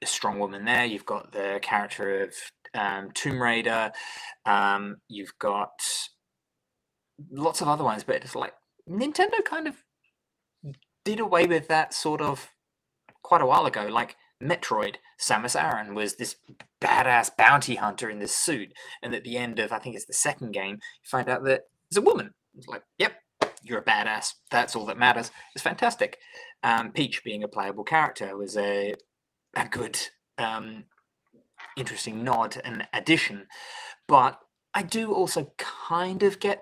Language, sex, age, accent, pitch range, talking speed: English, male, 20-39, British, 125-200 Hz, 160 wpm